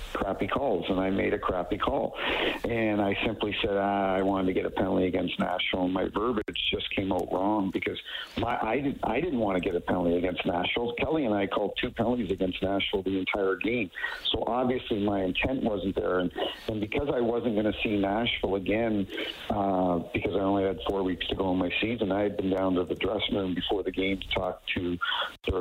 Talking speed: 220 wpm